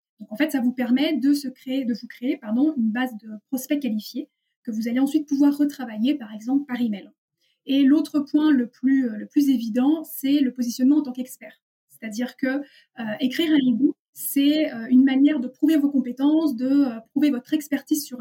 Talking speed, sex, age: 205 wpm, female, 20-39